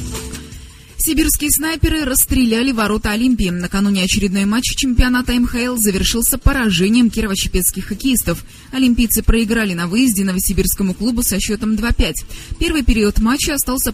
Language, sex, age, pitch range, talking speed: Russian, female, 20-39, 185-245 Hz, 115 wpm